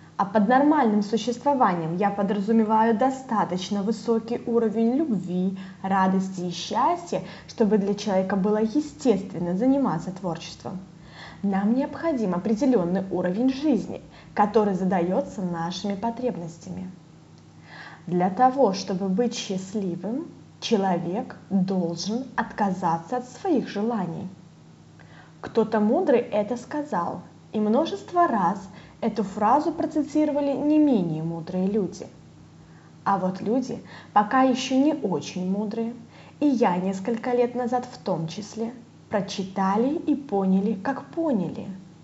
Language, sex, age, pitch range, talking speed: Russian, female, 20-39, 190-250 Hz, 105 wpm